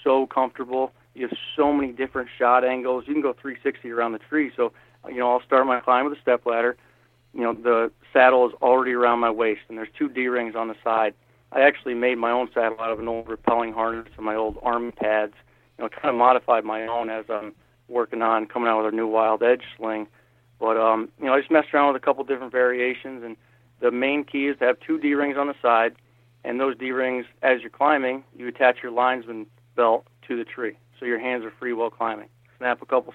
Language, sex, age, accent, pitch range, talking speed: English, male, 40-59, American, 115-130 Hz, 235 wpm